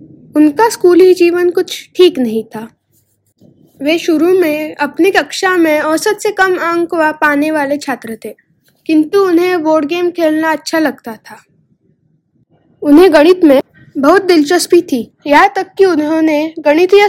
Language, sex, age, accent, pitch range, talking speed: Hindi, female, 10-29, native, 290-350 Hz, 145 wpm